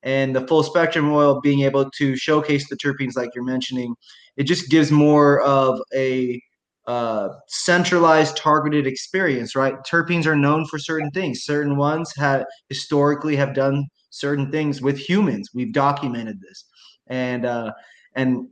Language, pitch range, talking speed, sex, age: English, 130-150 Hz, 150 wpm, male, 20-39